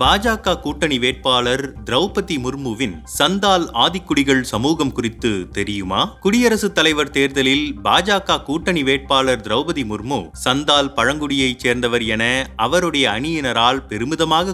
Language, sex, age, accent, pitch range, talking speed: Tamil, male, 30-49, native, 130-170 Hz, 105 wpm